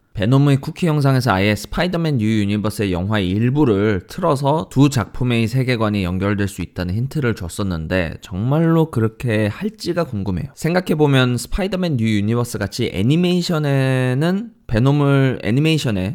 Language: Korean